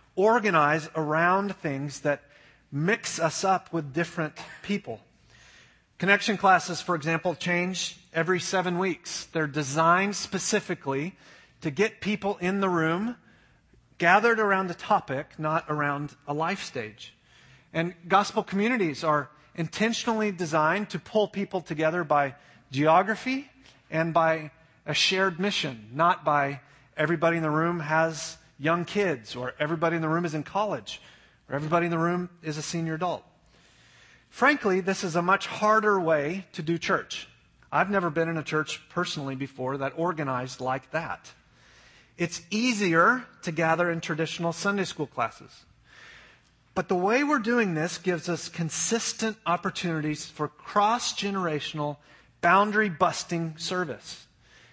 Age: 30-49